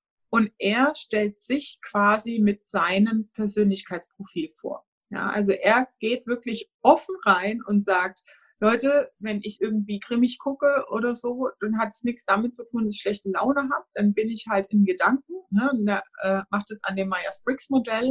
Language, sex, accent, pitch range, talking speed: German, female, German, 200-260 Hz, 175 wpm